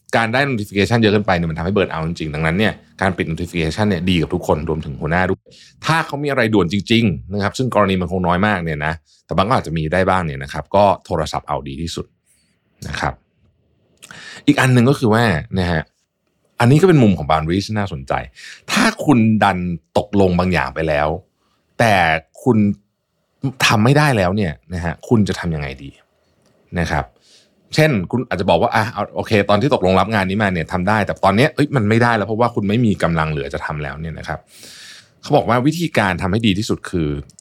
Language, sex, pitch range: Thai, male, 80-110 Hz